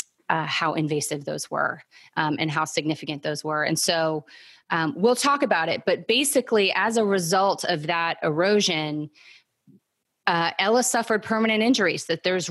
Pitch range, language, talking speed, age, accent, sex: 165-215 Hz, English, 160 wpm, 30-49, American, female